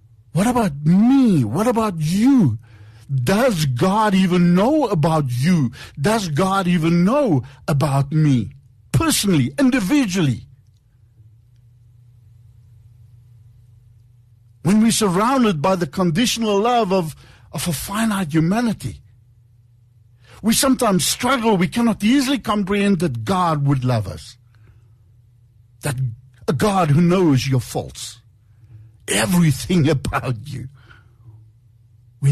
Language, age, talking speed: English, 60-79, 100 wpm